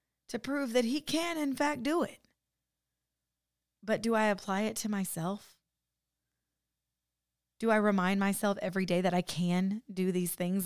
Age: 20-39